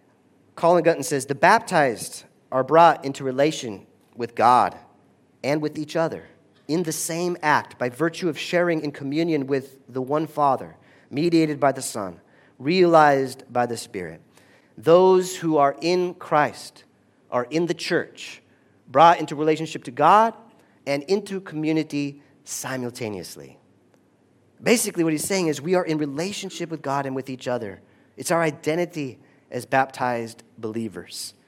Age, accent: 40-59, American